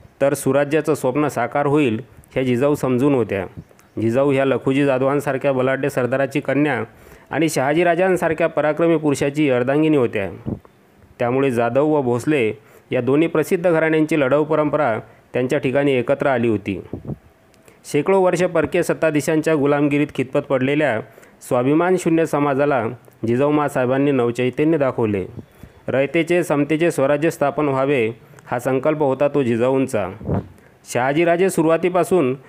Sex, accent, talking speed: male, native, 115 wpm